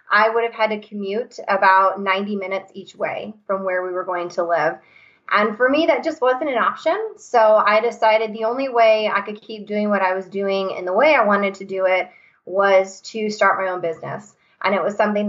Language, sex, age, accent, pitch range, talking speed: English, female, 20-39, American, 190-230 Hz, 230 wpm